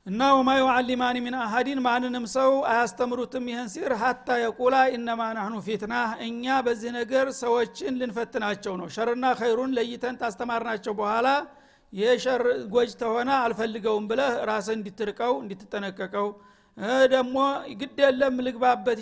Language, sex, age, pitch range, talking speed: Amharic, male, 50-69, 220-255 Hz, 125 wpm